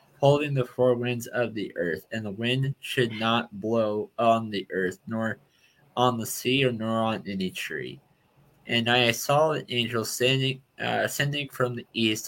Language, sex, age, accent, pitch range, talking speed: English, male, 20-39, American, 110-130 Hz, 175 wpm